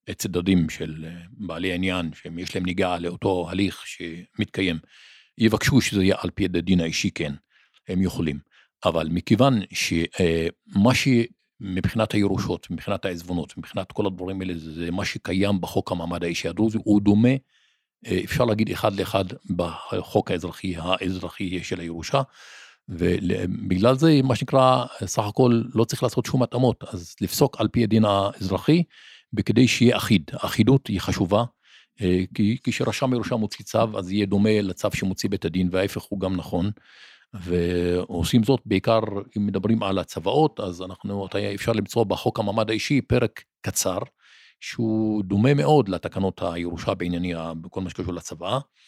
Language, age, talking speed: Hebrew, 50-69, 140 wpm